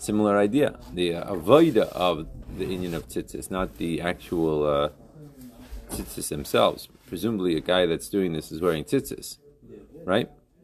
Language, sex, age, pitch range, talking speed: English, male, 40-59, 85-135 Hz, 145 wpm